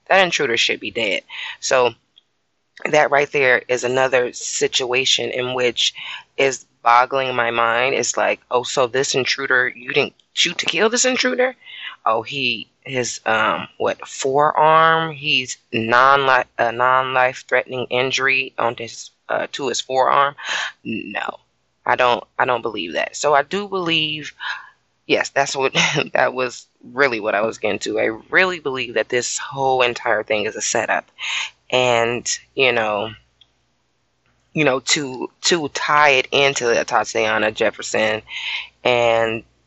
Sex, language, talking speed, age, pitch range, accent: female, English, 145 wpm, 20-39, 115-140 Hz, American